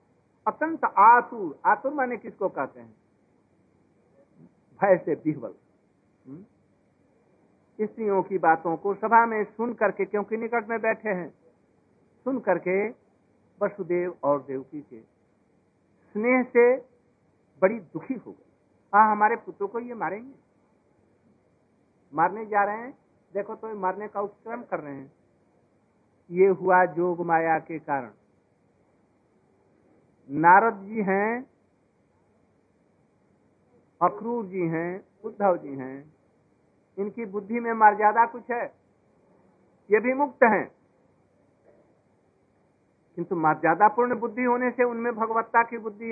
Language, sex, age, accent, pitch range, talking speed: Hindi, male, 60-79, native, 175-230 Hz, 115 wpm